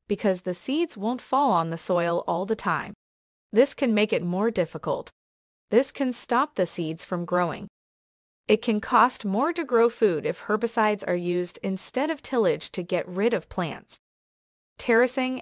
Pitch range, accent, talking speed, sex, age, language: 180-245 Hz, American, 170 wpm, female, 30-49, English